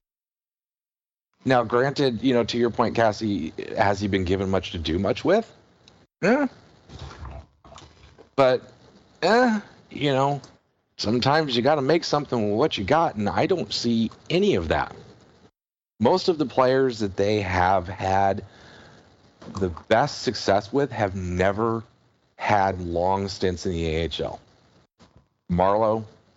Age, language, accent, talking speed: 40-59, English, American, 135 wpm